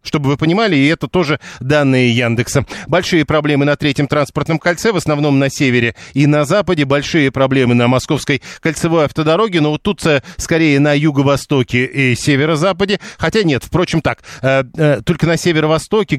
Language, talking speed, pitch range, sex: Russian, 155 wpm, 135-165 Hz, male